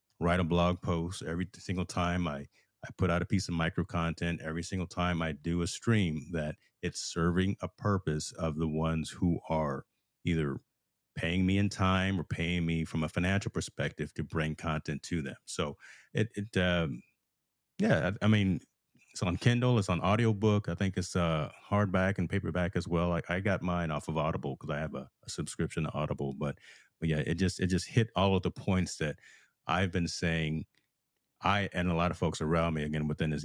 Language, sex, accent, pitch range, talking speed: English, male, American, 80-95 Hz, 205 wpm